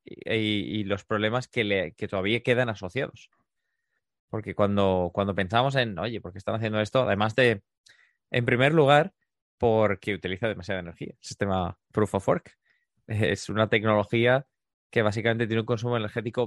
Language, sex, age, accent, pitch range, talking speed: Spanish, male, 20-39, Spanish, 95-120 Hz, 160 wpm